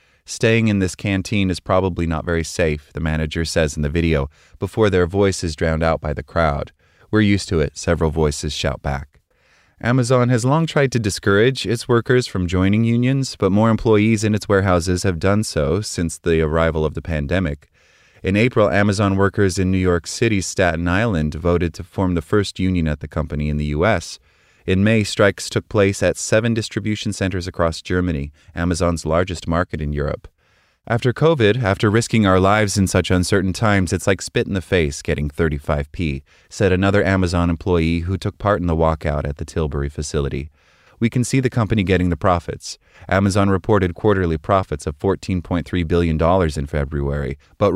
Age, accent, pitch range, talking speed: 30-49, American, 80-105 Hz, 185 wpm